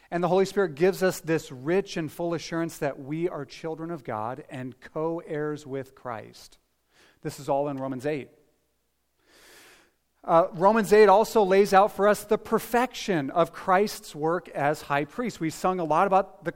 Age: 40-59